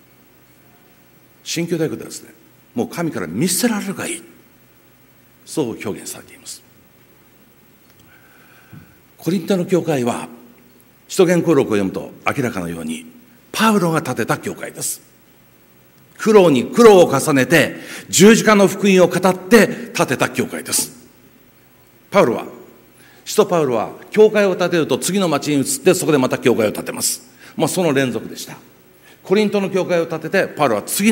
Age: 60-79